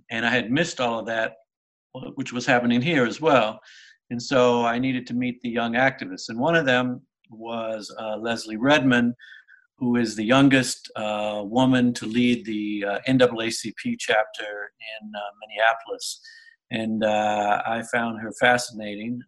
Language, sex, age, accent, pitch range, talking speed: English, male, 60-79, American, 110-130 Hz, 160 wpm